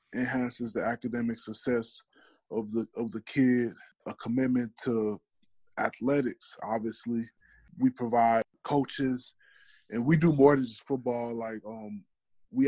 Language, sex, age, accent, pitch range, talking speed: English, male, 20-39, American, 115-130 Hz, 130 wpm